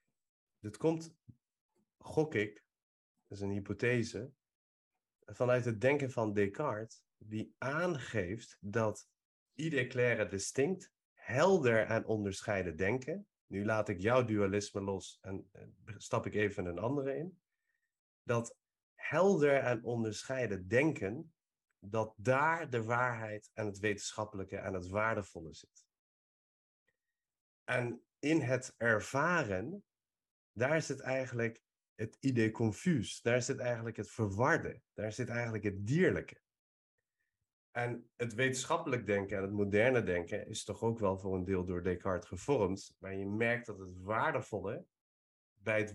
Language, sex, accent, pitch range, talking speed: Dutch, male, Dutch, 100-130 Hz, 130 wpm